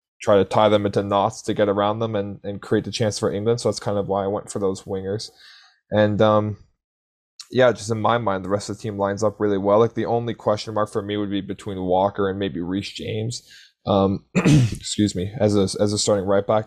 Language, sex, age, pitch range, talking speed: English, male, 10-29, 100-110 Hz, 245 wpm